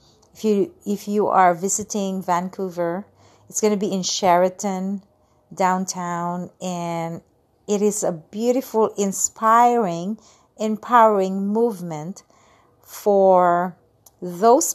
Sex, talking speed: female, 95 wpm